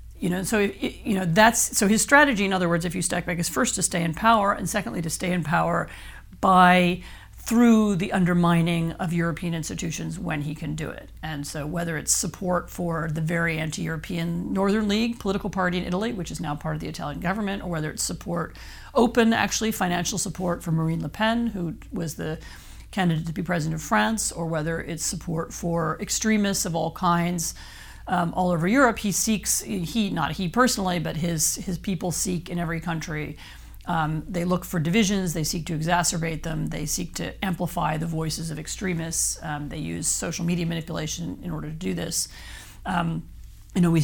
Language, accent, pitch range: English, American, 160-190 Hz